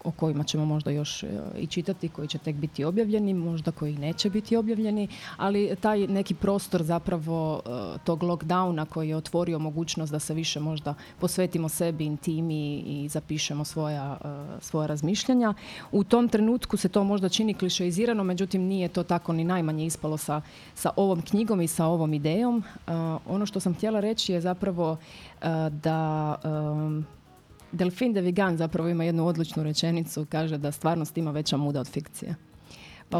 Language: Croatian